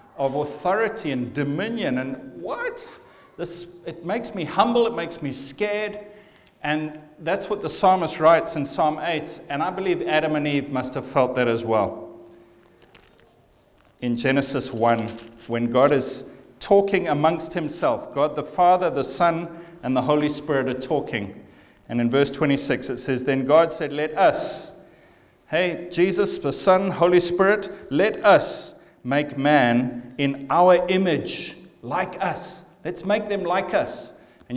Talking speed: 155 wpm